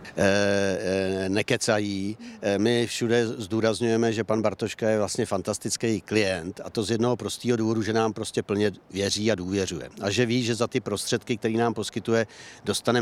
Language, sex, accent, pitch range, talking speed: Czech, male, native, 110-125 Hz, 170 wpm